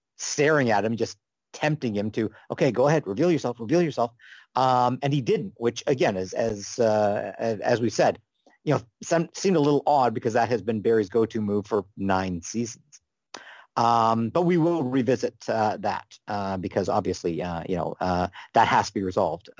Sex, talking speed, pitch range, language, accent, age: male, 190 wpm, 115-145 Hz, English, American, 50-69